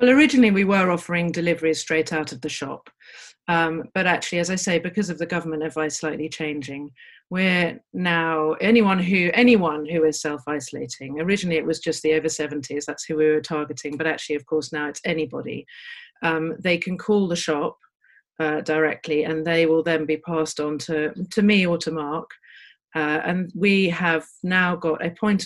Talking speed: 185 wpm